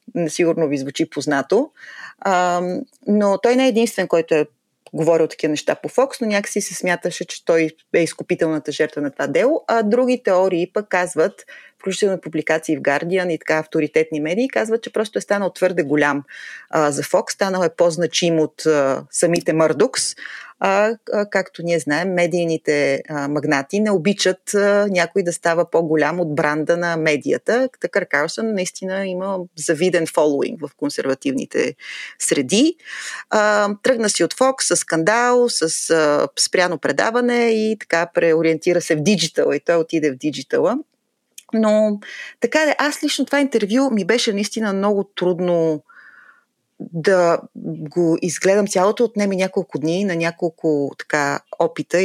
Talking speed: 150 wpm